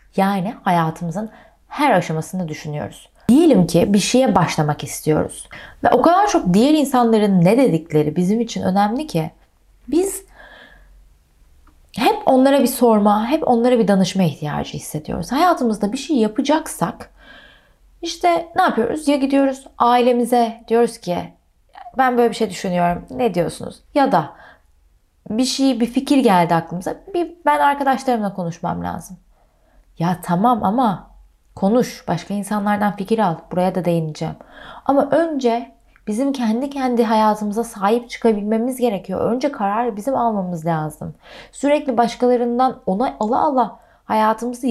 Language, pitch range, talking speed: Turkish, 180-260 Hz, 130 wpm